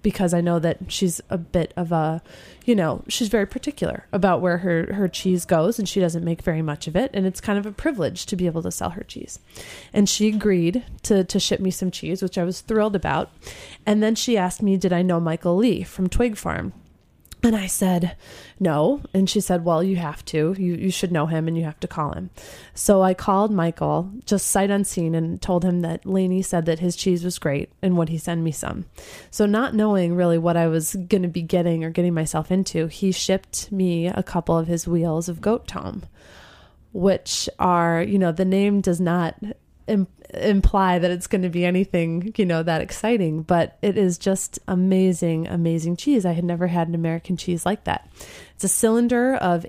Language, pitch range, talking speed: English, 170-195 Hz, 215 wpm